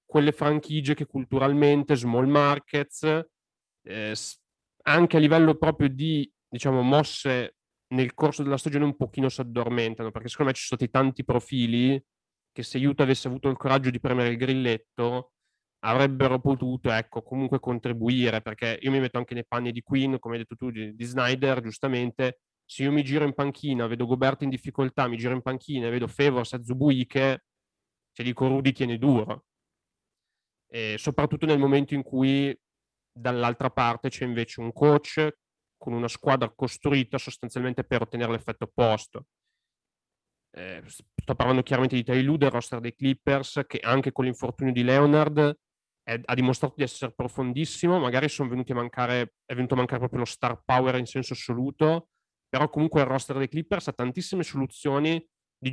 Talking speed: 170 wpm